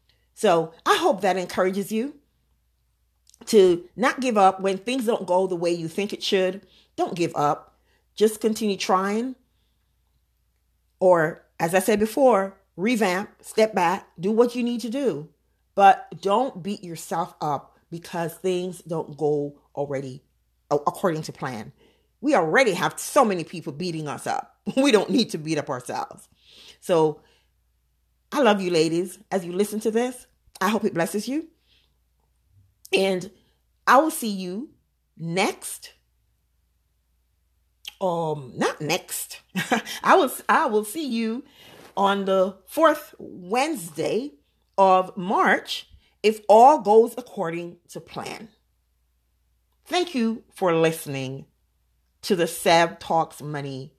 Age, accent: 40-59, American